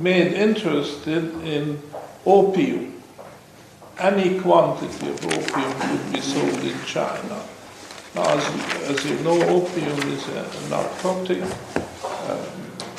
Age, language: 60-79, English